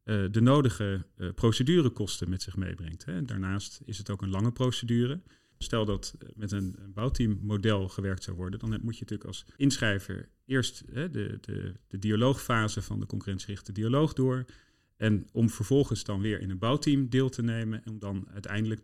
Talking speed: 165 wpm